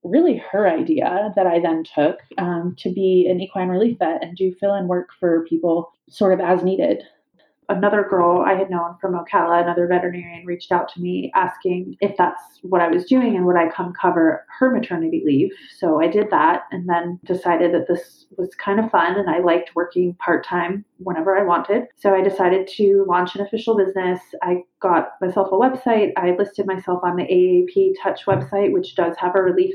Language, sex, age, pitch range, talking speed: English, female, 30-49, 175-200 Hz, 205 wpm